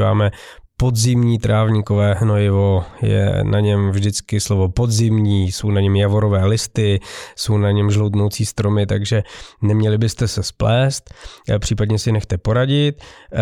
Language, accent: Czech, native